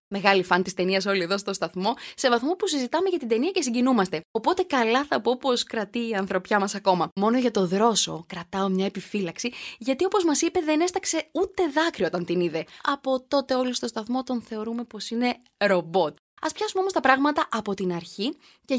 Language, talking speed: Greek, 205 wpm